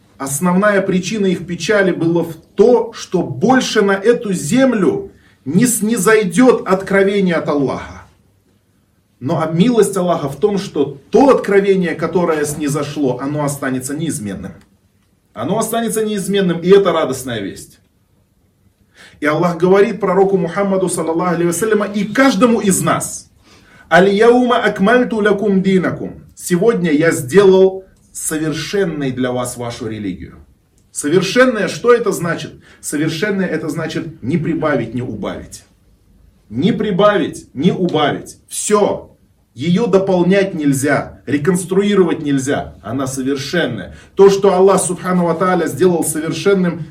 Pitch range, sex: 130-195 Hz, male